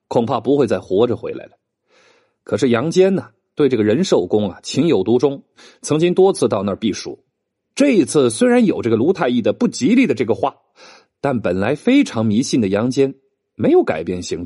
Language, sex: Chinese, male